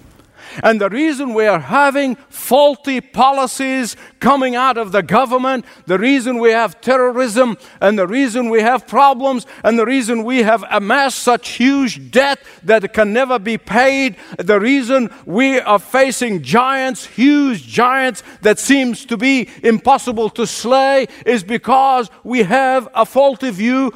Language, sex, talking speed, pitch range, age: English, male, 150 wpm, 205-265 Hz, 50-69